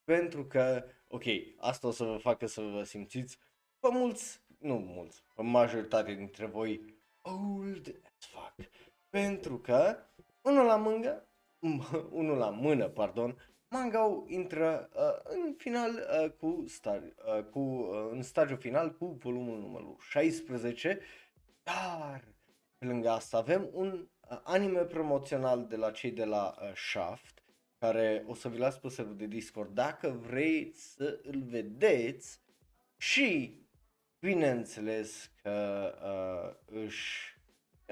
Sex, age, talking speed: male, 20-39, 120 wpm